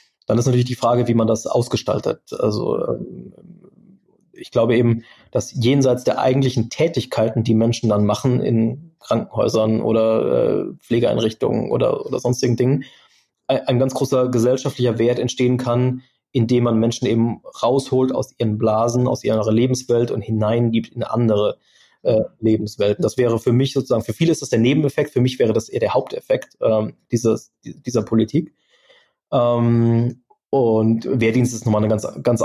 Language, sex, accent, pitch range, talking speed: German, male, German, 115-135 Hz, 155 wpm